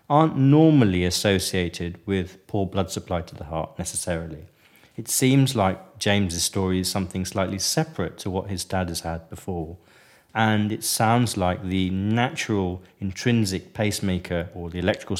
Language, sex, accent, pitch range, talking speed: English, male, British, 90-115 Hz, 150 wpm